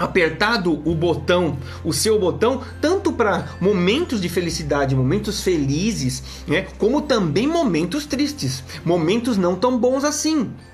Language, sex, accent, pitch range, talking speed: Portuguese, male, Brazilian, 155-235 Hz, 130 wpm